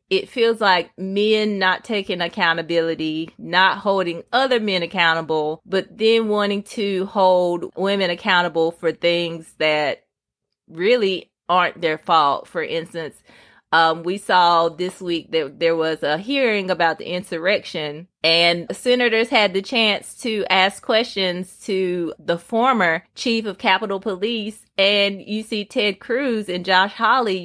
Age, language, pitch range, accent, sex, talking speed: 30-49, English, 165-210 Hz, American, female, 140 wpm